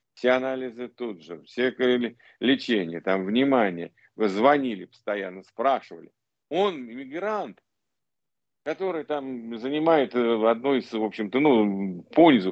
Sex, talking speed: male, 110 wpm